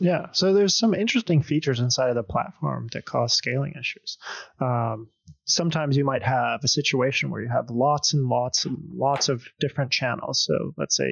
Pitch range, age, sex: 120-150 Hz, 20-39, male